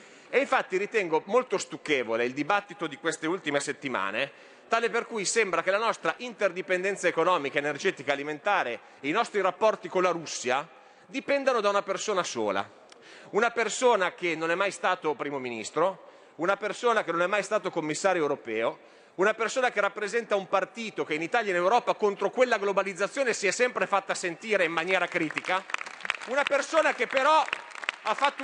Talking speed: 175 wpm